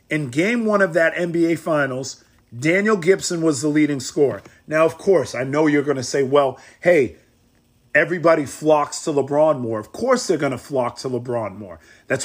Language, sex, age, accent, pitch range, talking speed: English, male, 40-59, American, 150-200 Hz, 190 wpm